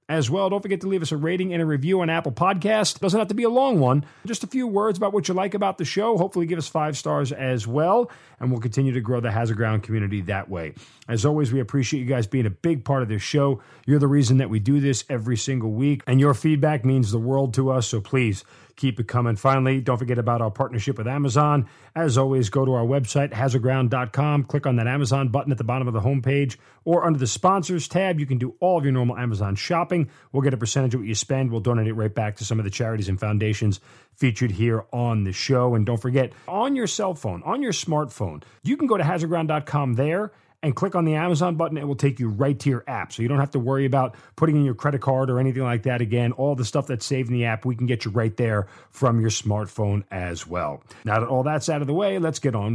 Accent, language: American, English